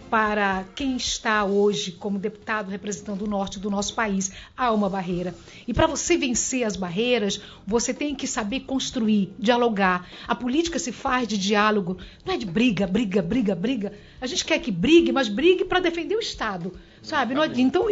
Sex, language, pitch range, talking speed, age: female, Portuguese, 215-285 Hz, 175 wpm, 60-79